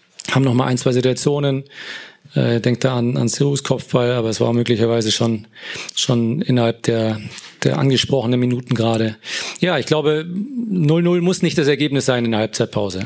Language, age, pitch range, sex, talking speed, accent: German, 40-59, 125-150 Hz, male, 165 wpm, German